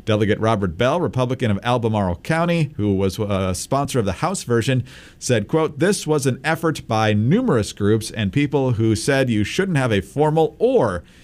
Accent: American